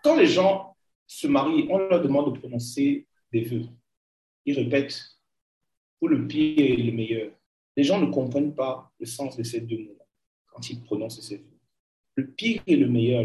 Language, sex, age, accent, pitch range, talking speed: French, male, 40-59, French, 120-180 Hz, 190 wpm